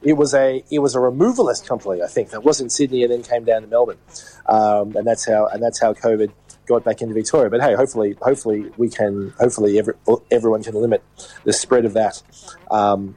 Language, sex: English, male